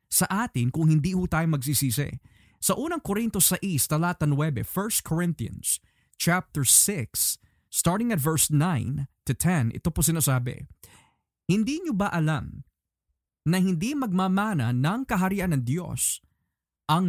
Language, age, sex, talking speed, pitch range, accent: Filipino, 20-39, male, 135 wpm, 135-180 Hz, native